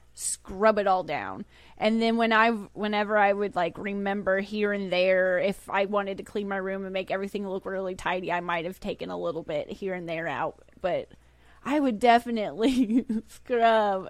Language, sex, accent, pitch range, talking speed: English, female, American, 200-255 Hz, 190 wpm